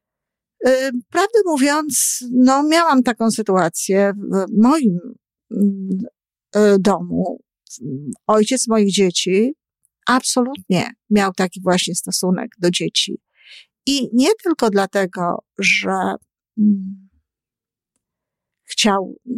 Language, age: Polish, 50-69